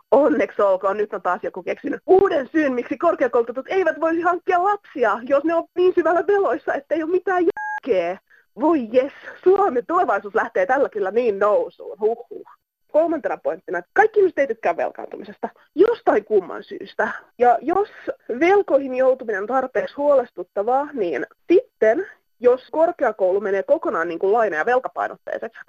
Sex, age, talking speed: female, 30-49, 145 wpm